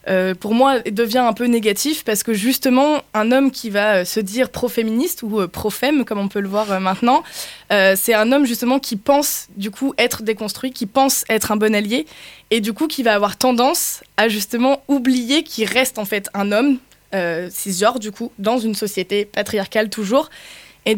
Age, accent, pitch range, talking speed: 20-39, French, 205-250 Hz, 210 wpm